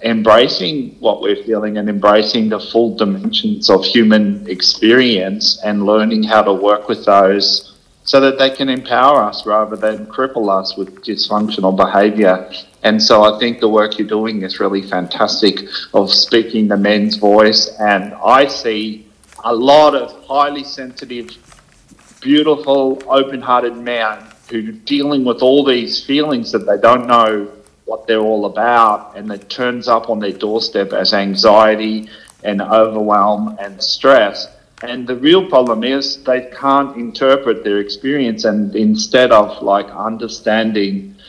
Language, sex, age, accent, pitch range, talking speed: English, male, 40-59, Australian, 105-120 Hz, 150 wpm